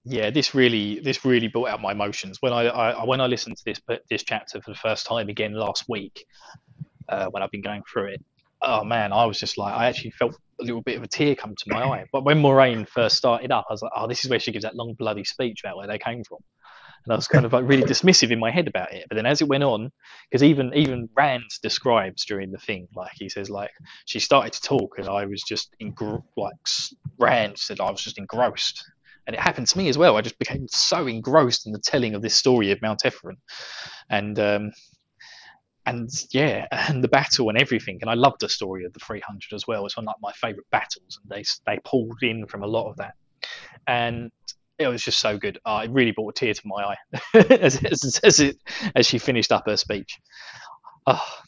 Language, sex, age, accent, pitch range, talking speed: English, male, 20-39, British, 105-135 Hz, 240 wpm